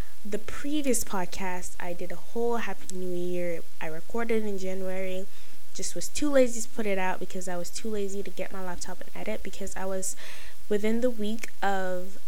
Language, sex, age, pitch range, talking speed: English, female, 10-29, 185-230 Hz, 195 wpm